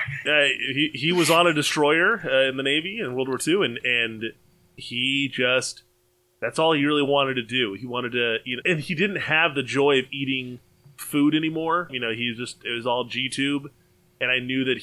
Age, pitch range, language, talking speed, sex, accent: 20-39, 125-150 Hz, English, 215 wpm, male, American